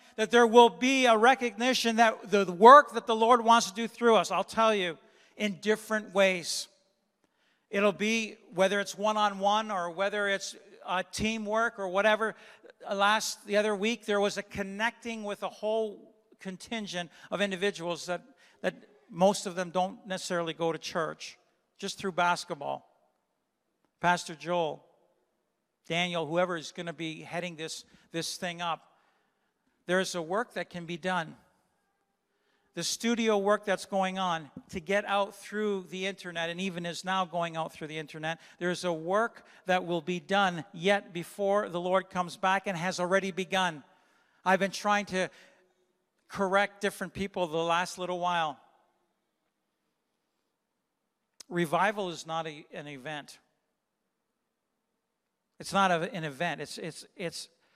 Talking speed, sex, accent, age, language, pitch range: 155 wpm, male, American, 50-69, English, 175-210 Hz